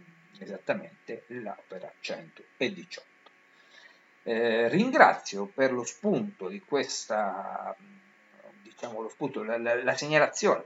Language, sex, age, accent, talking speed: Italian, male, 50-69, native, 95 wpm